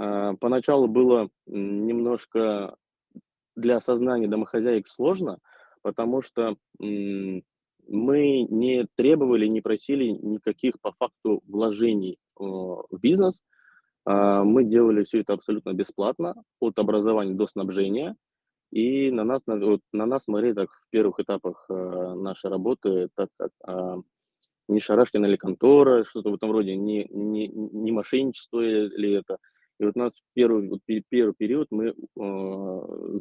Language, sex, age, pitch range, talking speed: Russian, male, 20-39, 100-115 Hz, 130 wpm